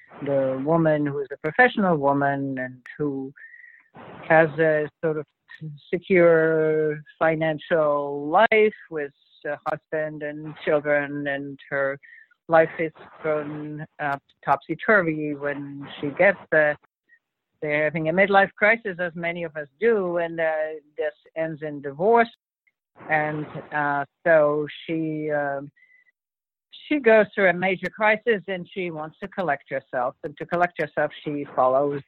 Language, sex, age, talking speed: English, female, 60-79, 135 wpm